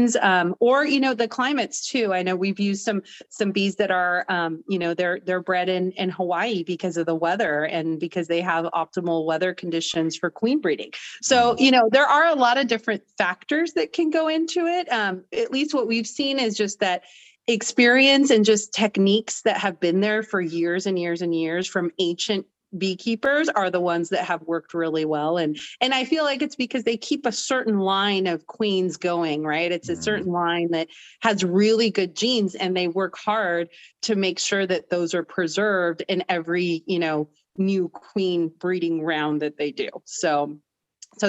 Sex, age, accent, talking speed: female, 30-49, American, 200 wpm